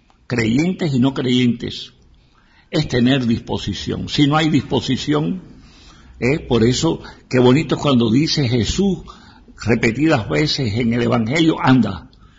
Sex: male